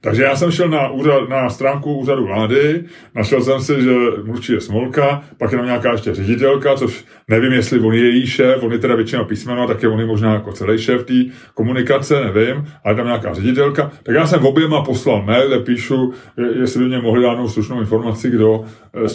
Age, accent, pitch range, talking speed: 30-49, native, 110-135 Hz, 215 wpm